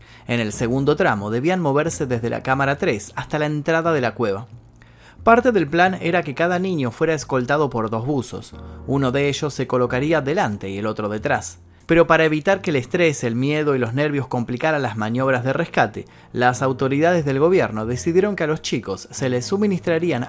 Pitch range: 110-155 Hz